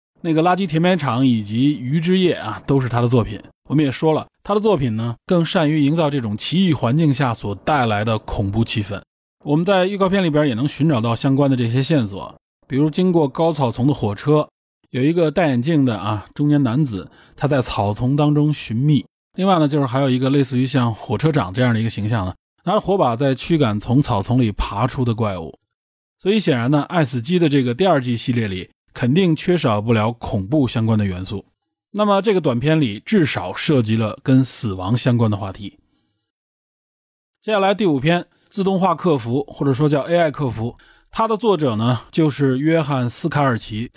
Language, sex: Chinese, male